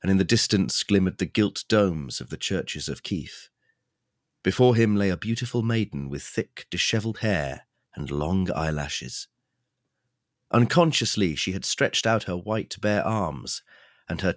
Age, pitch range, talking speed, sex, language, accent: 40-59, 90-120 Hz, 155 wpm, male, English, British